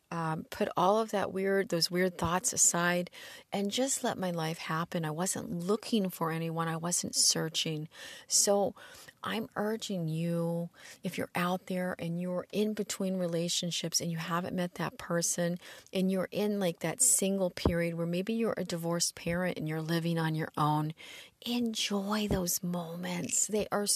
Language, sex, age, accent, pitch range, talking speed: English, female, 40-59, American, 165-195 Hz, 170 wpm